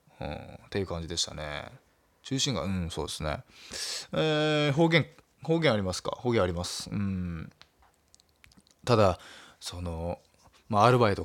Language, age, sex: Japanese, 20-39, male